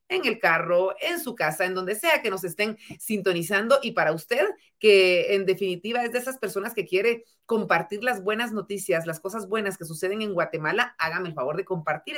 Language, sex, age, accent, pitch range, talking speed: Spanish, female, 40-59, Mexican, 180-250 Hz, 200 wpm